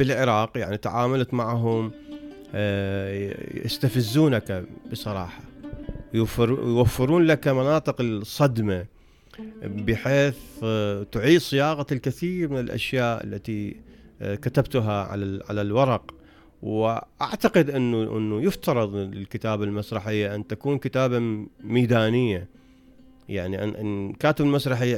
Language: Arabic